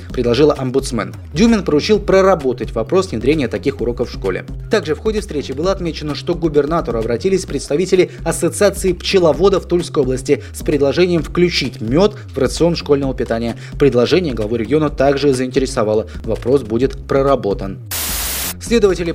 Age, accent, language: 20-39, native, Russian